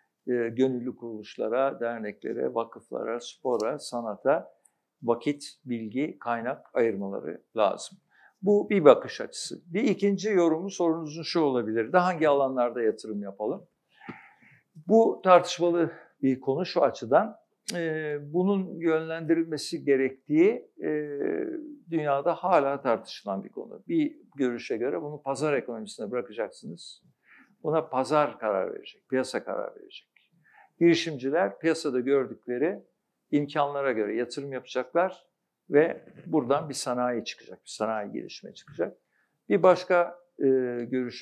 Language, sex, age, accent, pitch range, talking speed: Turkish, male, 60-79, native, 120-170 Hz, 110 wpm